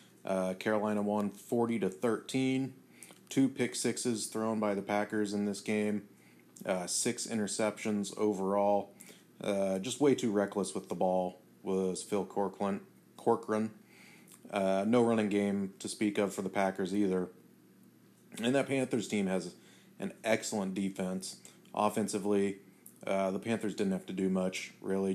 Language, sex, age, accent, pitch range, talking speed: English, male, 30-49, American, 95-110 Hz, 145 wpm